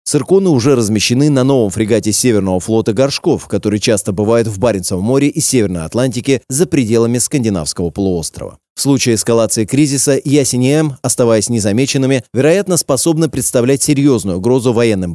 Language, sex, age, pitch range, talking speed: Russian, male, 30-49, 110-145 Hz, 140 wpm